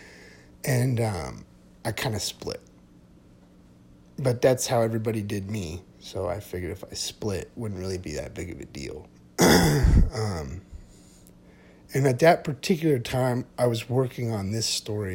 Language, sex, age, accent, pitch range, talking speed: English, male, 30-49, American, 90-115 Hz, 155 wpm